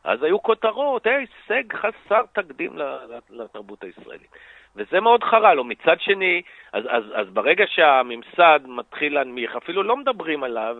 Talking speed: 135 wpm